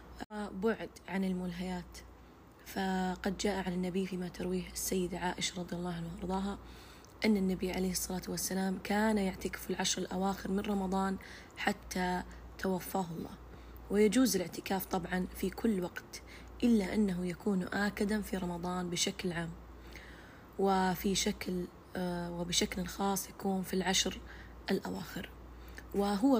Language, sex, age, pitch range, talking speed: Arabic, female, 20-39, 185-205 Hz, 120 wpm